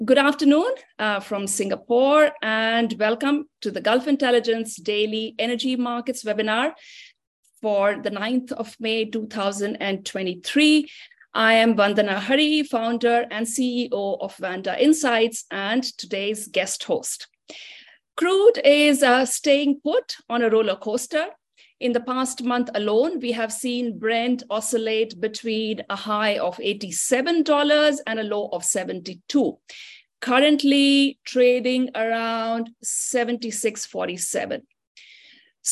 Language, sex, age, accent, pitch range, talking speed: English, female, 50-69, Indian, 220-275 Hz, 115 wpm